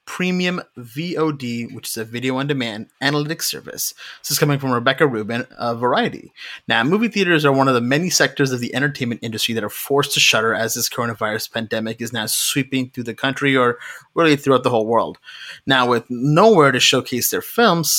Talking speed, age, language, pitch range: 195 wpm, 30-49, English, 115-145 Hz